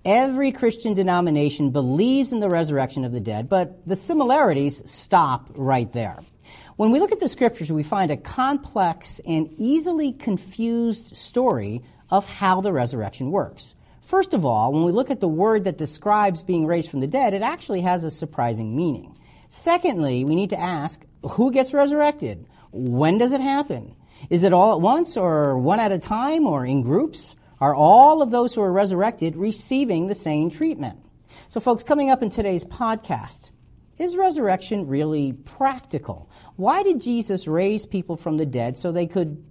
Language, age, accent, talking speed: English, 50-69, American, 175 wpm